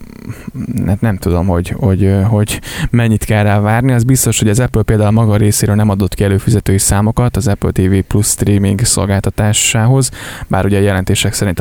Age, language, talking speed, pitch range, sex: 20-39, Hungarian, 170 wpm, 95-115 Hz, male